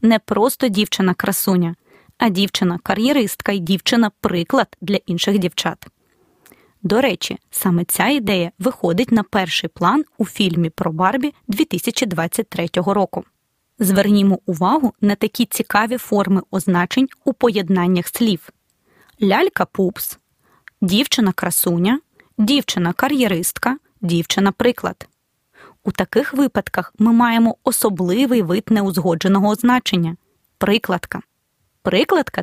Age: 20-39